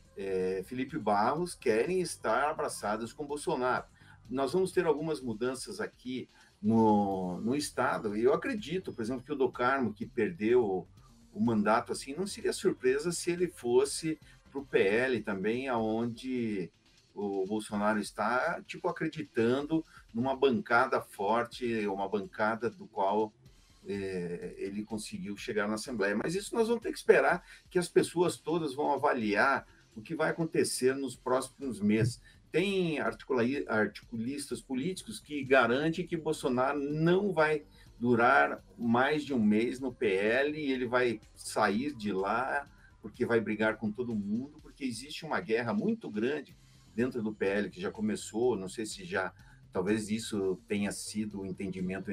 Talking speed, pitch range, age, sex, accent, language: 150 wpm, 110-165 Hz, 50-69, male, Brazilian, Portuguese